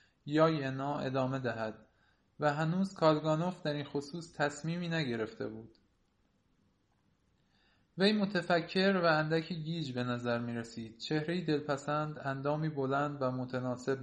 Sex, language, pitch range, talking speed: male, Persian, 130-160 Hz, 115 wpm